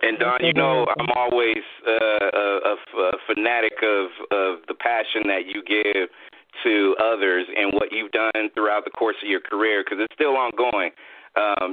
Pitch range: 105-120 Hz